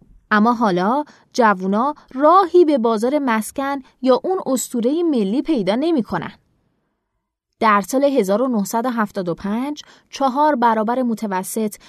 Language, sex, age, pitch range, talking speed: Persian, female, 20-39, 210-295 Hz, 100 wpm